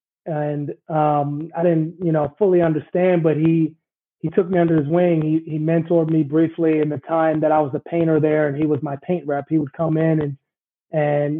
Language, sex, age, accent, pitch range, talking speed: English, male, 30-49, American, 150-170 Hz, 225 wpm